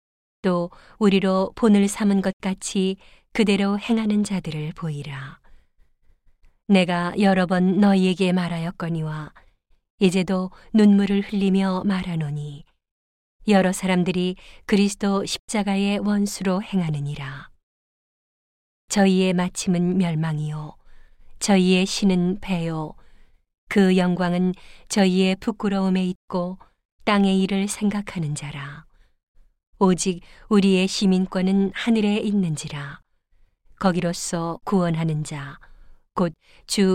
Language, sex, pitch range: Korean, female, 170-195 Hz